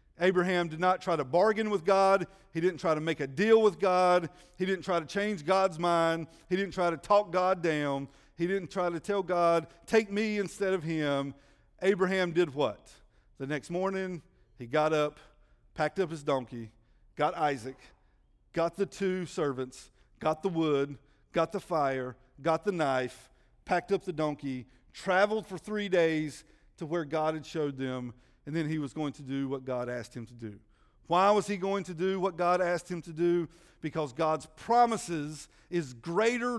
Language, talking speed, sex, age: English, 185 wpm, male, 40-59